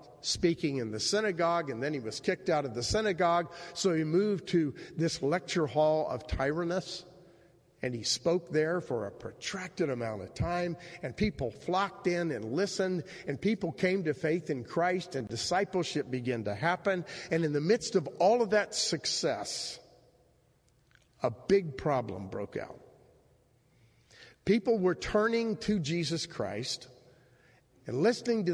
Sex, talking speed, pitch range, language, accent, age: male, 155 wpm, 130-185 Hz, English, American, 50-69